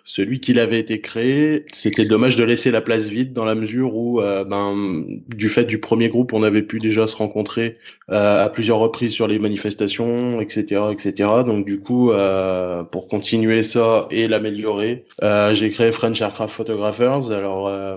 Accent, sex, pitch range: French, male, 100-120 Hz